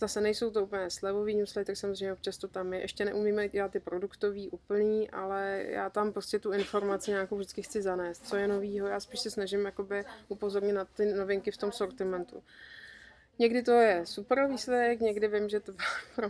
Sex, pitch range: female, 195-215 Hz